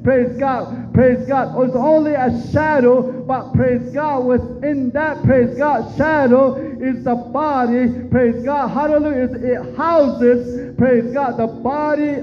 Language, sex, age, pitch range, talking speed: English, male, 50-69, 245-295 Hz, 135 wpm